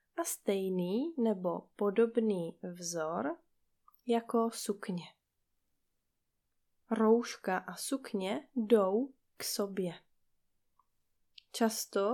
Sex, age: female, 20-39